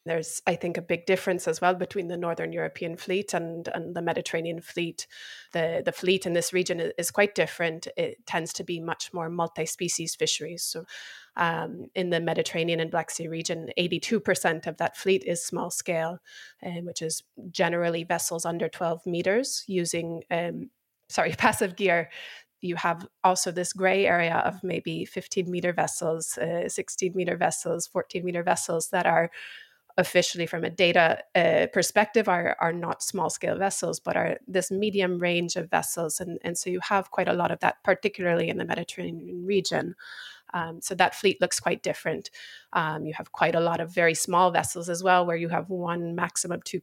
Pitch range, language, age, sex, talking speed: 165-185 Hz, English, 20-39, female, 185 wpm